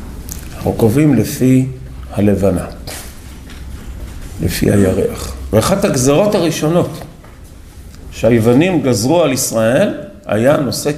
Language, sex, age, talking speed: Hebrew, male, 50-69, 80 wpm